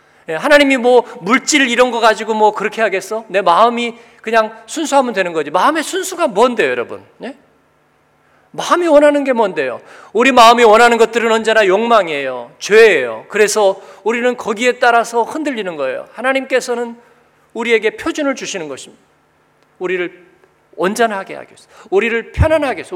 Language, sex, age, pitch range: Korean, male, 40-59, 195-255 Hz